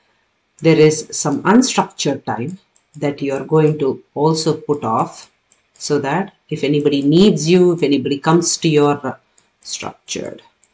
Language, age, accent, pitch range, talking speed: English, 50-69, Indian, 145-175 Hz, 140 wpm